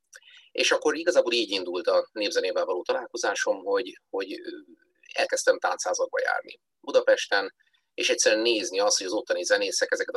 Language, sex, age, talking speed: Hungarian, male, 30-49, 140 wpm